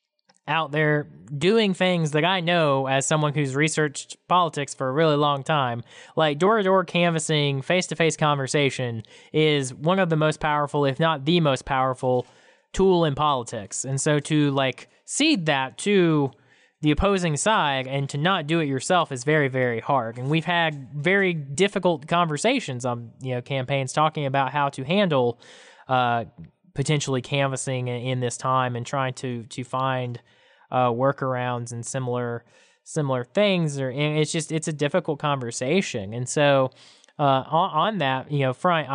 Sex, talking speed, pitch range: male, 170 wpm, 125-155 Hz